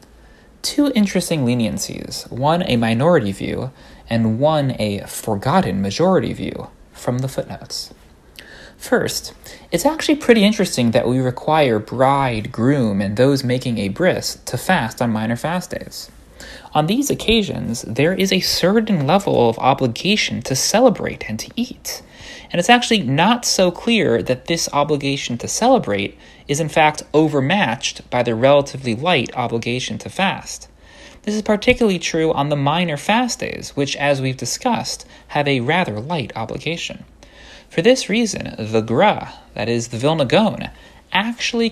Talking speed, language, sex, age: 150 wpm, English, male, 30-49